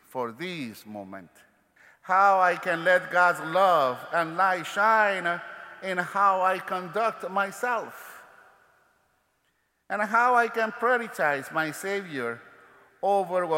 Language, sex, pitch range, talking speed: English, male, 140-200 Hz, 110 wpm